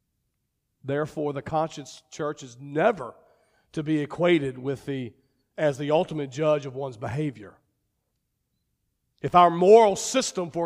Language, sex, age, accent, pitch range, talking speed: English, male, 50-69, American, 165-230 Hz, 130 wpm